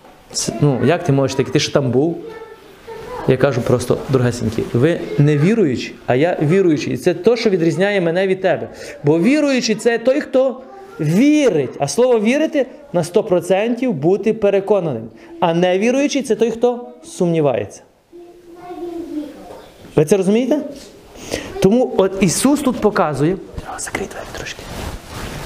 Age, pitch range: 30-49, 170-245 Hz